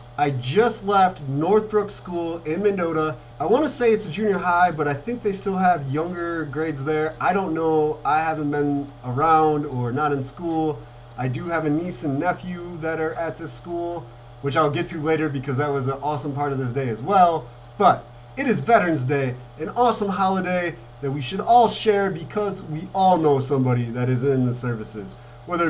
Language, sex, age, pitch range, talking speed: English, male, 30-49, 135-185 Hz, 205 wpm